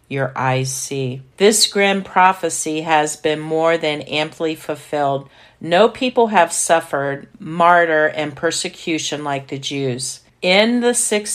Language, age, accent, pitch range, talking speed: English, 50-69, American, 145-180 Hz, 130 wpm